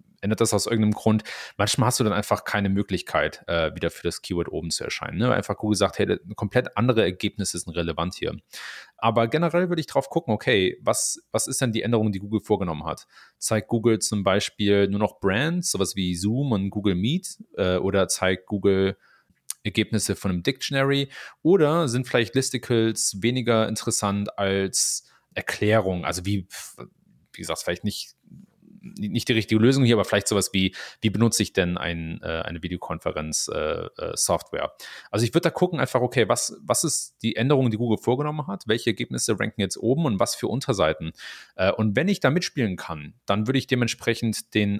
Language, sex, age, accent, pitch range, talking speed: German, male, 30-49, German, 95-125 Hz, 180 wpm